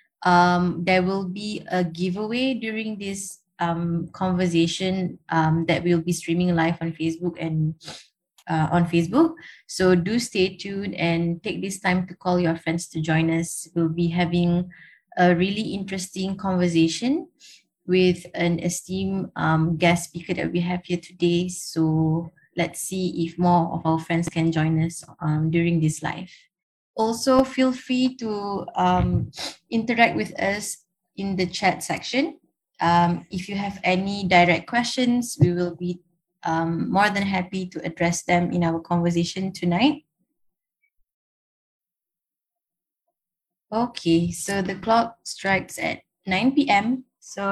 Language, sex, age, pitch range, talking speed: Malay, female, 20-39, 170-200 Hz, 140 wpm